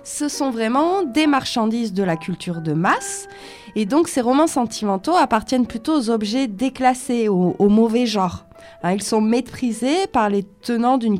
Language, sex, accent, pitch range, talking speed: French, female, French, 200-270 Hz, 165 wpm